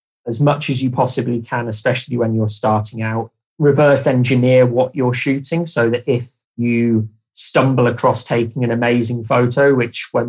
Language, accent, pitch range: English, British, 115-130 Hz